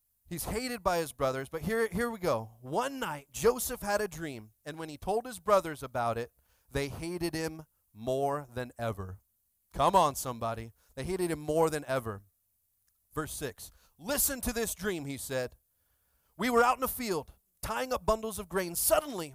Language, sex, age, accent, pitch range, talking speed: English, male, 30-49, American, 115-185 Hz, 185 wpm